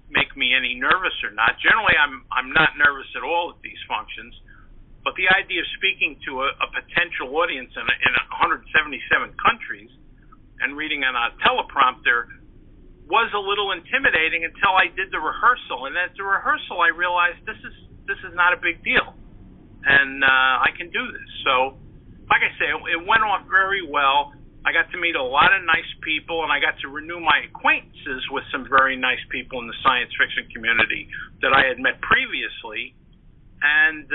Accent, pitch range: American, 130-185 Hz